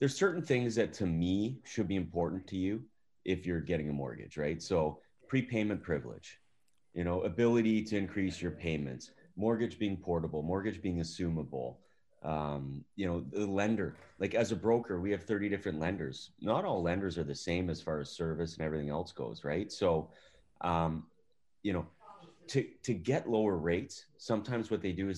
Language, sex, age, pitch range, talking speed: English, male, 30-49, 80-105 Hz, 180 wpm